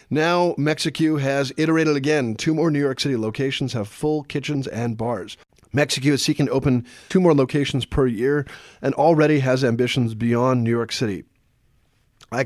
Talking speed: 170 wpm